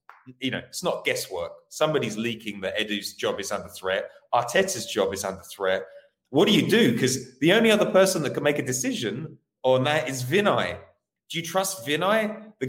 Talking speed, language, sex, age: 195 wpm, English, male, 30-49